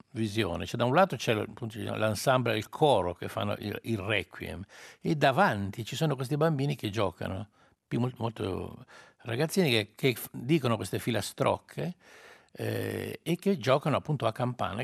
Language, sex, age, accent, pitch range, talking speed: Italian, male, 60-79, native, 105-130 Hz, 140 wpm